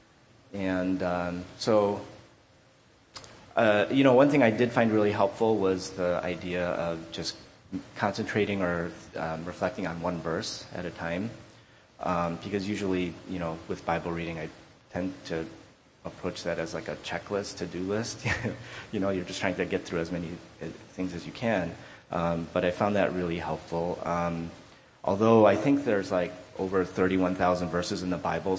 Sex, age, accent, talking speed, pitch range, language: male, 30-49, American, 170 wpm, 85-105 Hz, English